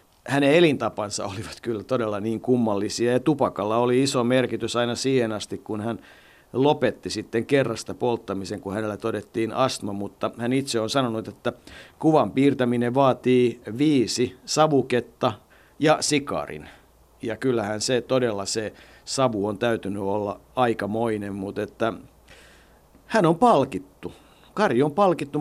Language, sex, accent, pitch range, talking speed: Finnish, male, native, 105-130 Hz, 130 wpm